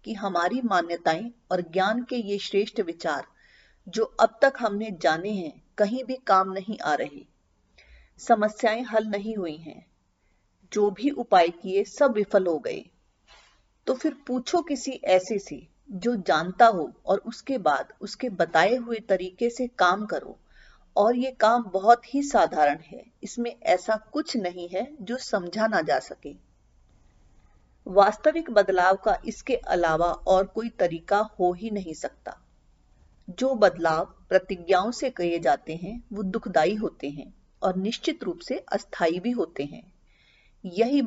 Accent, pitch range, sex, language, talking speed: native, 180-235 Hz, female, Hindi, 150 wpm